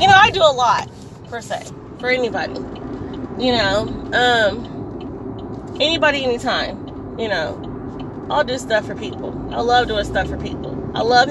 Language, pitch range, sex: English, 235-305 Hz, female